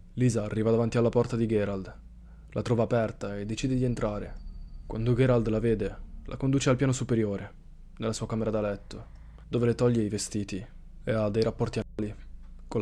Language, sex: Italian, male